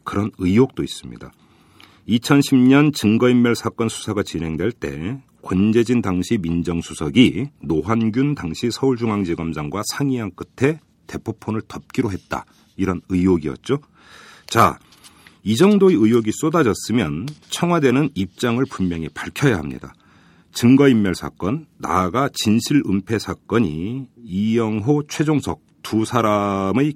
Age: 40-59